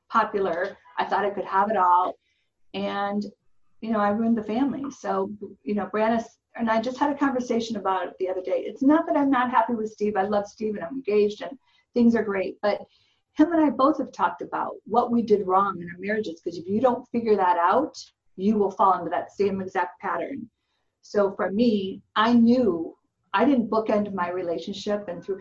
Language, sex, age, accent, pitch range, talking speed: English, female, 50-69, American, 190-240 Hz, 215 wpm